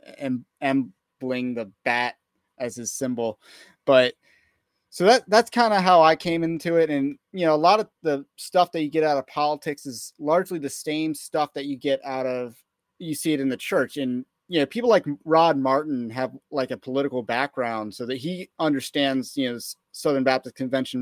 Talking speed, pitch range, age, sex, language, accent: 200 wpm, 120-150 Hz, 30-49, male, English, American